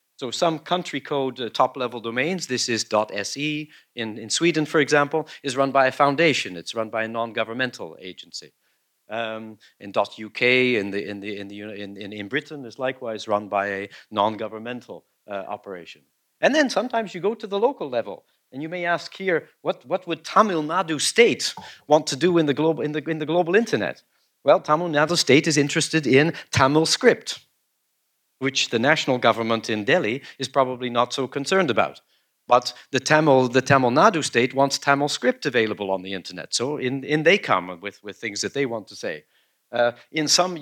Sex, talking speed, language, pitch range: male, 190 wpm, English, 115-155 Hz